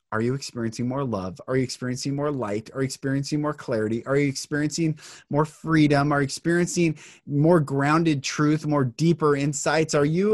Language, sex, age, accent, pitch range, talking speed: English, male, 30-49, American, 140-180 Hz, 180 wpm